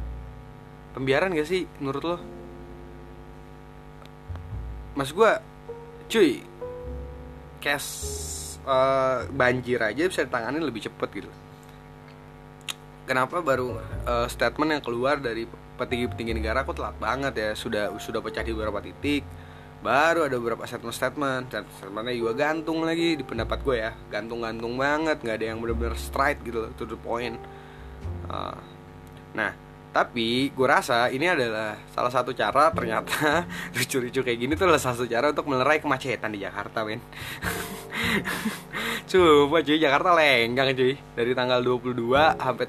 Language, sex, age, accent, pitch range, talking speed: Indonesian, male, 20-39, native, 100-140 Hz, 130 wpm